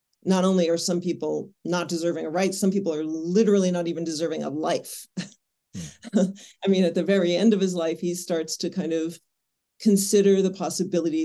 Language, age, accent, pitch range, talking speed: English, 40-59, American, 165-195 Hz, 185 wpm